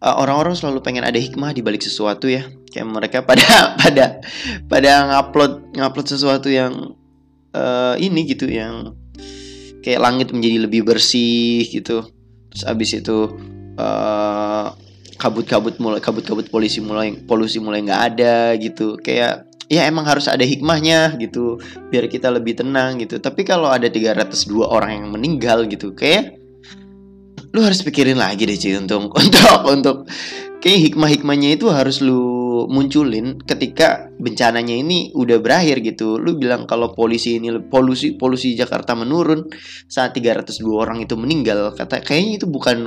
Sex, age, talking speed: male, 20-39, 145 wpm